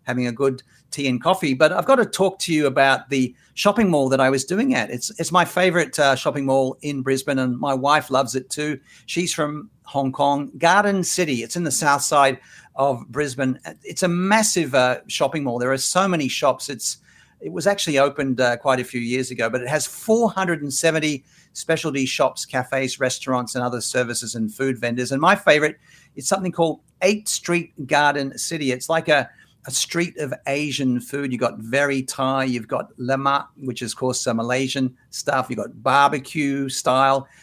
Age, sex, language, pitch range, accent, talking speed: 50-69, male, English, 130-165 Hz, Australian, 195 wpm